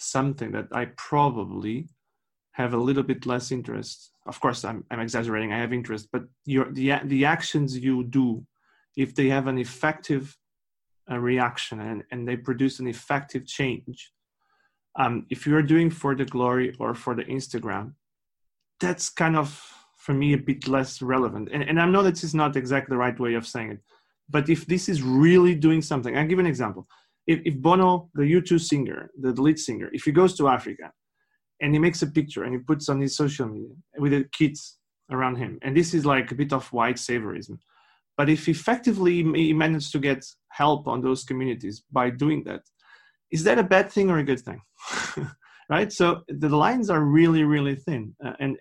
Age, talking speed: 30-49, 195 wpm